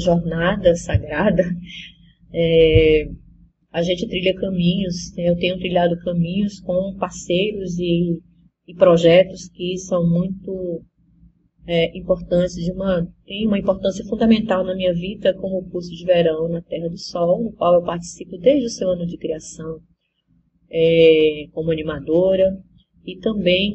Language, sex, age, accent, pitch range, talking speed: Portuguese, female, 20-39, Brazilian, 170-205 Hz, 135 wpm